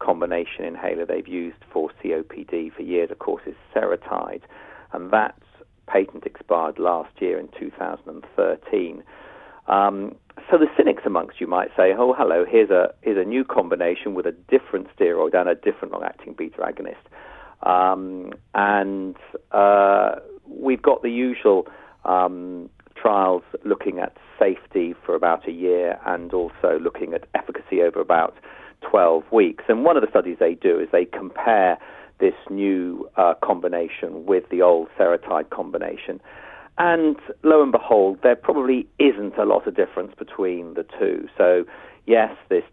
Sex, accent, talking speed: male, British, 150 wpm